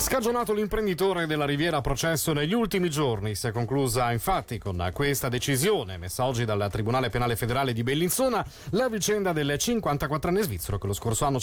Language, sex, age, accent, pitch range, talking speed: Italian, male, 30-49, native, 140-205 Hz, 175 wpm